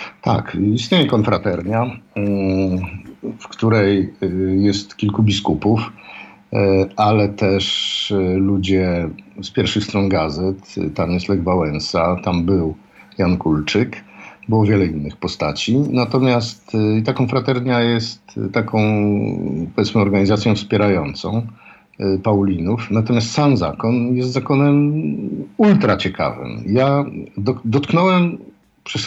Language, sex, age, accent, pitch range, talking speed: Polish, male, 50-69, native, 95-125 Hz, 95 wpm